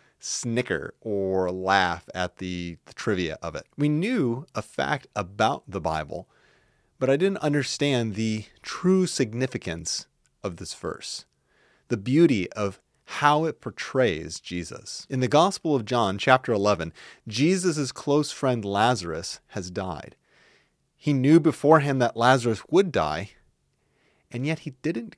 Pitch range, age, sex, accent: 100-145 Hz, 30-49, male, American